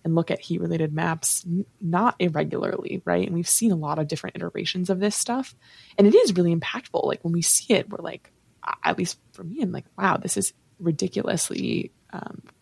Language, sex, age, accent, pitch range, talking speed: English, female, 20-39, American, 160-195 Hz, 210 wpm